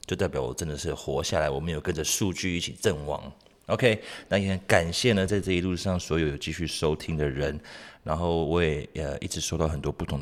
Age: 30-49